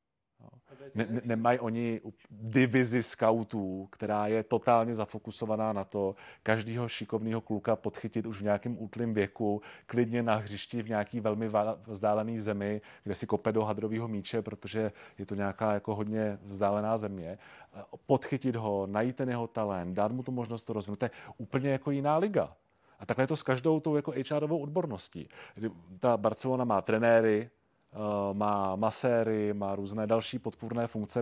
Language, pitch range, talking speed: Czech, 105-125 Hz, 155 wpm